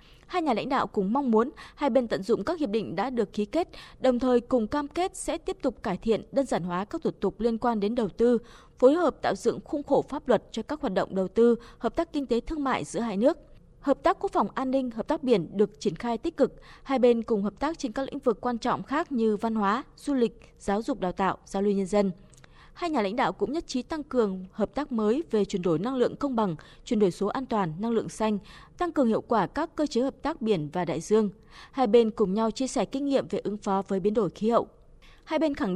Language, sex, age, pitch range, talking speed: Vietnamese, female, 20-39, 205-275 Hz, 270 wpm